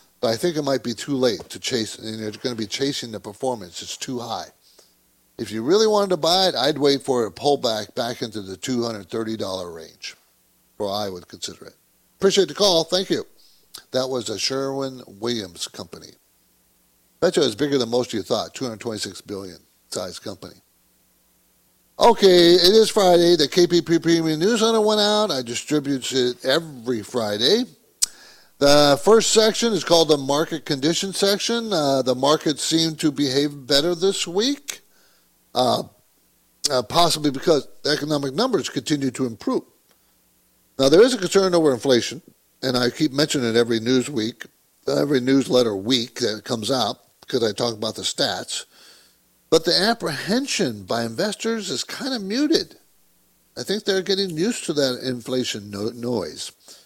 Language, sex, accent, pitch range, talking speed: English, male, American, 120-175 Hz, 160 wpm